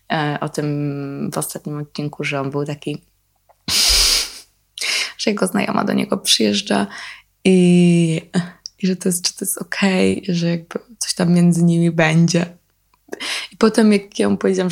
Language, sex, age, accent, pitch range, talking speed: Polish, female, 20-39, native, 165-210 Hz, 150 wpm